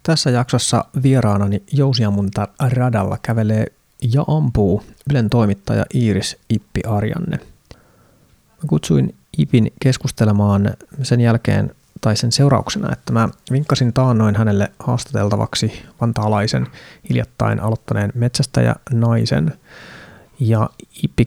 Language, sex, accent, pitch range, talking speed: Finnish, male, native, 110-125 Hz, 100 wpm